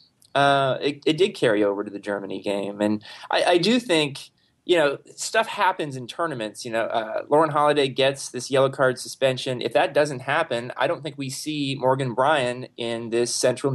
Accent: American